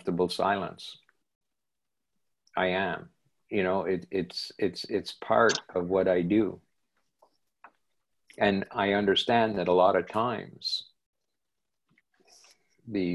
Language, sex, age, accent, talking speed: English, male, 50-69, American, 105 wpm